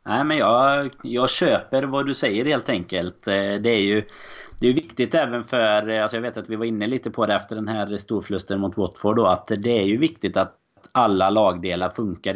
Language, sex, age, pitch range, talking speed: Swedish, male, 30-49, 95-115 Hz, 215 wpm